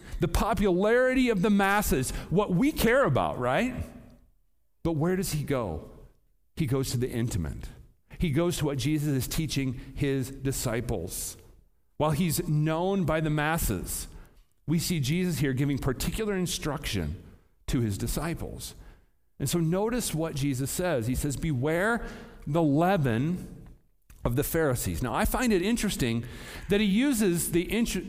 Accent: American